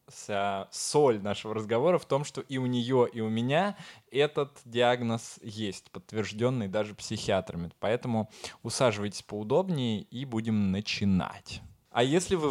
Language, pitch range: Russian, 105-125 Hz